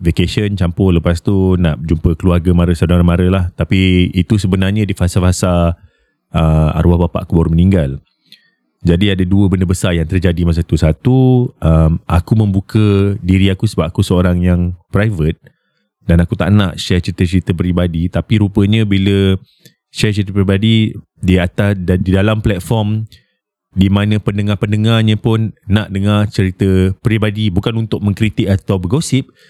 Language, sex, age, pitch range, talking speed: Malay, male, 30-49, 90-110 Hz, 150 wpm